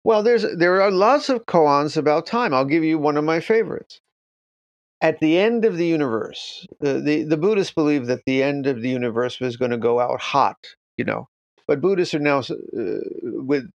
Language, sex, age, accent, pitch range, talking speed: English, male, 50-69, American, 135-195 Hz, 210 wpm